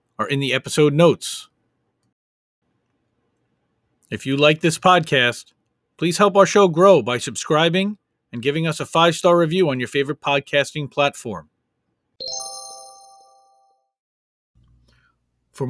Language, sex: English, male